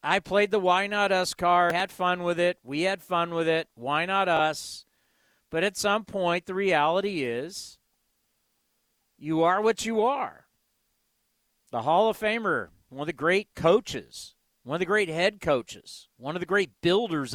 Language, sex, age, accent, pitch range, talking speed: English, male, 50-69, American, 150-205 Hz, 175 wpm